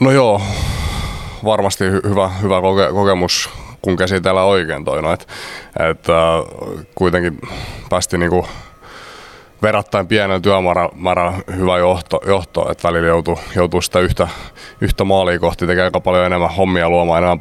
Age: 30-49